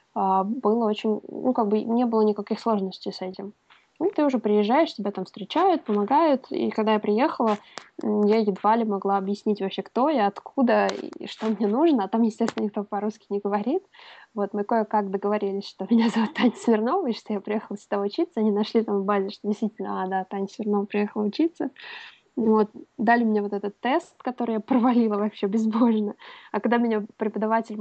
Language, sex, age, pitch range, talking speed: Russian, female, 20-39, 205-240 Hz, 185 wpm